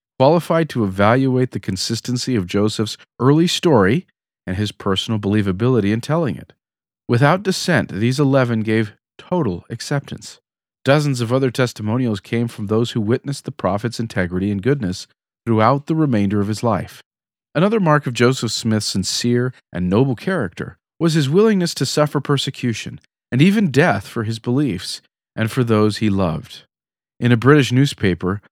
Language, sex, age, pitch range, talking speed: English, male, 40-59, 110-145 Hz, 155 wpm